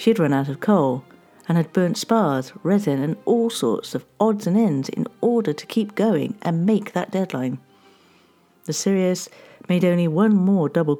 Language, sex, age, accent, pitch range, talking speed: English, female, 50-69, British, 140-205 Hz, 185 wpm